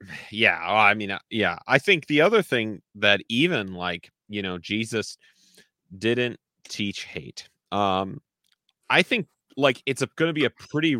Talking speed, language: 155 wpm, English